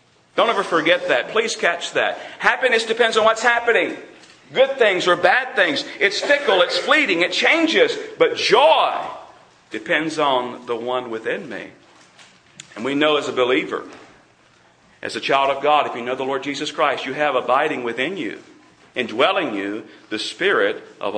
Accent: American